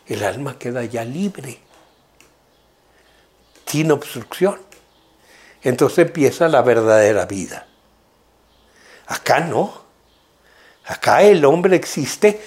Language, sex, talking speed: Spanish, male, 85 wpm